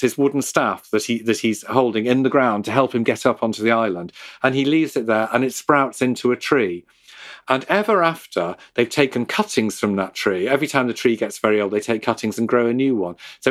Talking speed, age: 245 wpm, 40-59